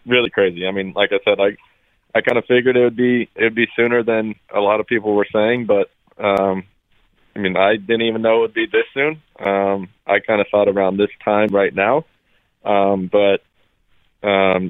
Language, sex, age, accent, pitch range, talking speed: English, male, 20-39, American, 95-110 Hz, 210 wpm